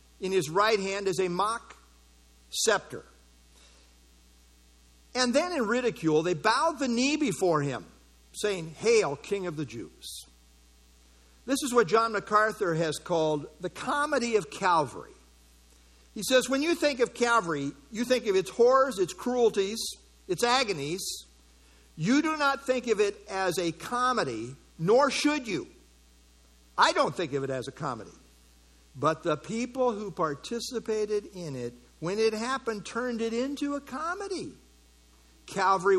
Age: 50-69